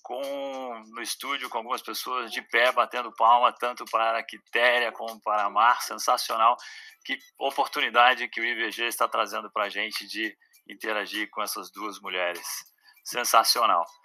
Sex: male